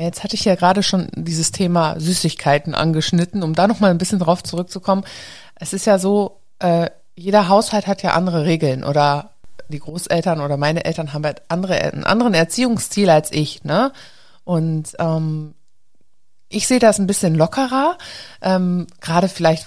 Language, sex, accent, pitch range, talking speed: German, female, German, 160-205 Hz, 155 wpm